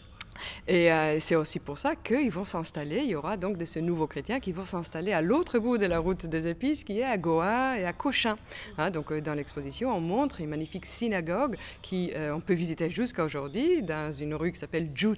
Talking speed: 230 wpm